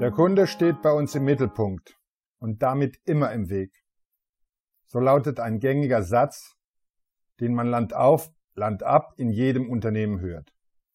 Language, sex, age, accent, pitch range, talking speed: German, male, 50-69, German, 120-170 Hz, 135 wpm